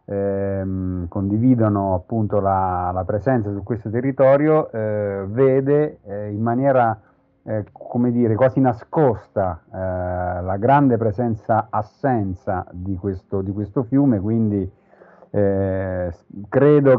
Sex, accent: male, native